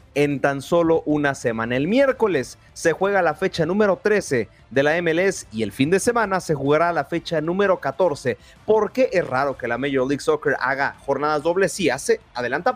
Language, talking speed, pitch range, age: Spanish, 195 wpm, 140-185 Hz, 30-49